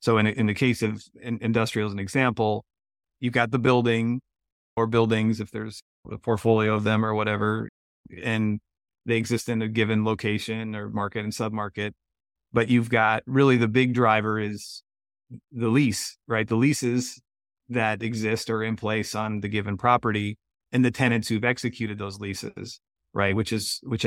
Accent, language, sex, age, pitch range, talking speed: American, English, male, 30-49, 105-115 Hz, 170 wpm